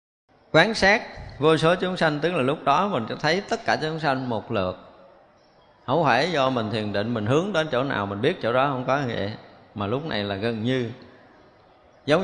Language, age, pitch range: Vietnamese, 20-39, 110-155 Hz